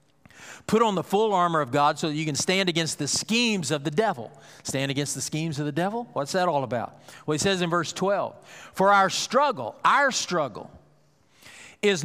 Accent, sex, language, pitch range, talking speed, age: American, male, English, 165-225 Hz, 205 wpm, 50-69